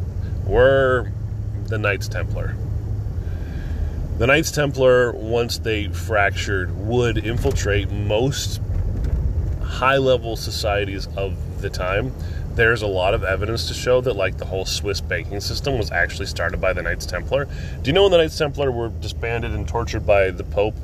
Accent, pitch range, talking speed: American, 85-105 Hz, 155 wpm